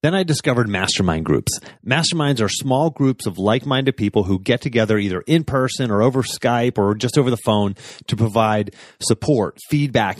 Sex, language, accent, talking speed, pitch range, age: male, English, American, 175 wpm, 105-130 Hz, 30-49